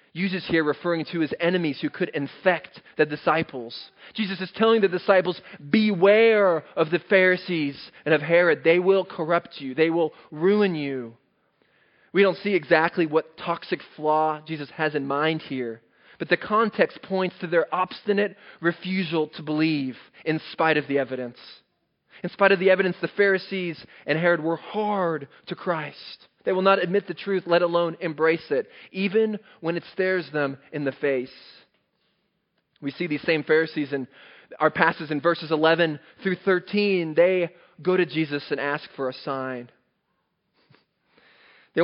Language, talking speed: English, 160 wpm